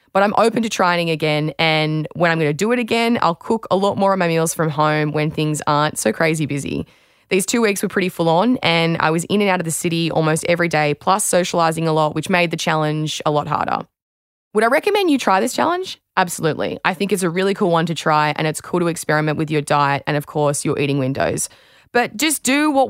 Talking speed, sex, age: 250 wpm, female, 20-39